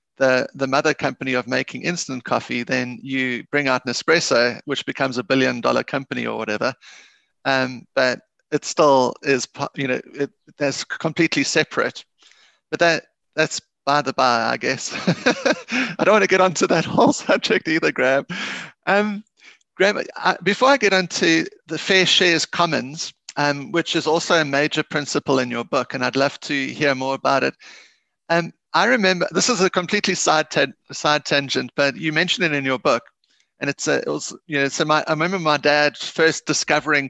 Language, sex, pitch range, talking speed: English, male, 140-175 Hz, 180 wpm